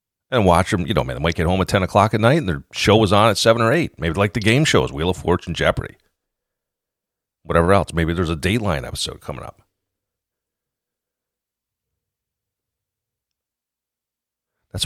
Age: 40-59